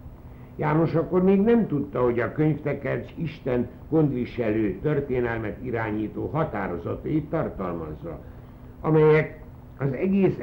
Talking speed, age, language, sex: 100 wpm, 60-79, Hungarian, male